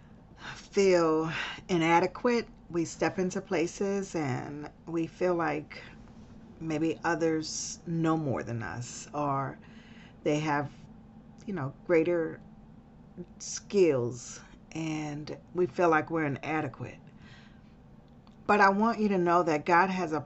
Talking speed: 115 wpm